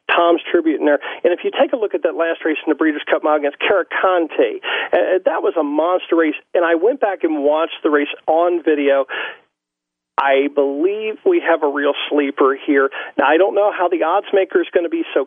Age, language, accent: 40-59, English, American